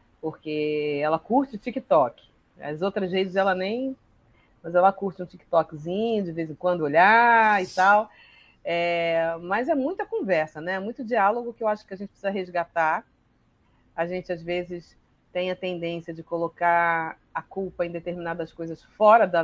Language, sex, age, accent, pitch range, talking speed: Portuguese, female, 40-59, Brazilian, 170-205 Hz, 165 wpm